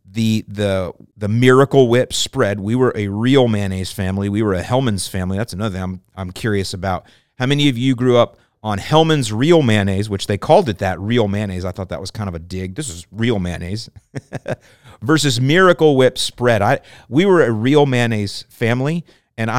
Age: 40-59